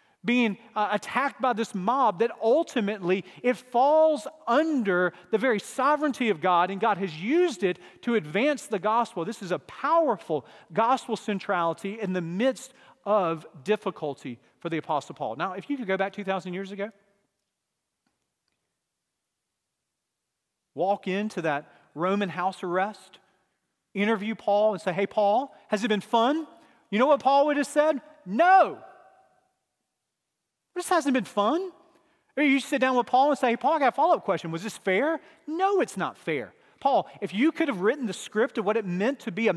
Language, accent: English, American